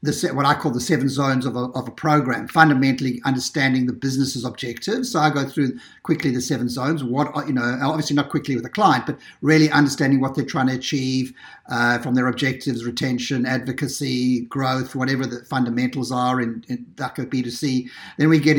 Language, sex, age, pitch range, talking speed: English, male, 50-69, 130-145 Hz, 200 wpm